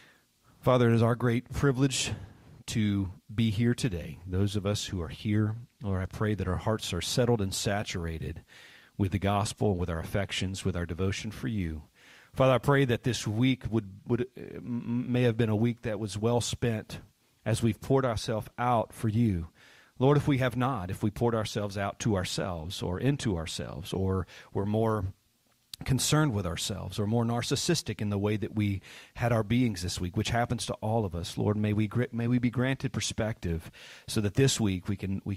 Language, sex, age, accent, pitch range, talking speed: English, male, 40-59, American, 100-120 Hz, 195 wpm